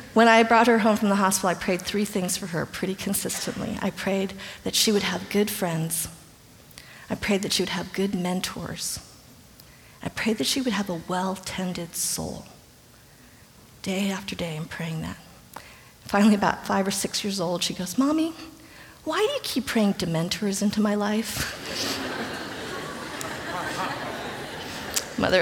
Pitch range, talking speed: 185-220 Hz, 160 wpm